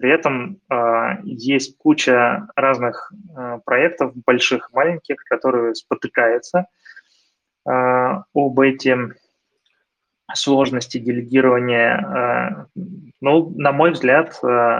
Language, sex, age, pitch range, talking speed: Russian, male, 20-39, 115-140 Hz, 75 wpm